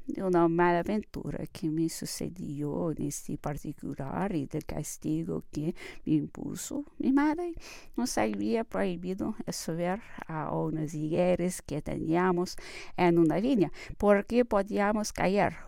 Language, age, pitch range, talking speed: English, 50-69, 155-230 Hz, 125 wpm